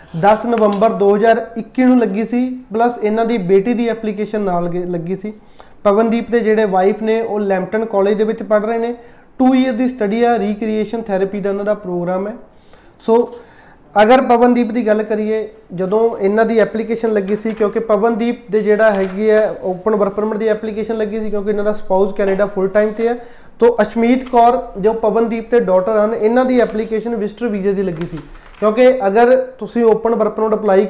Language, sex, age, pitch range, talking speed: Punjabi, male, 30-49, 205-230 Hz, 175 wpm